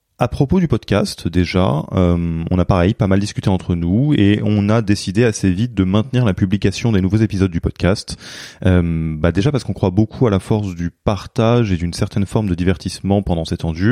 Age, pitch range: 20-39, 85-105 Hz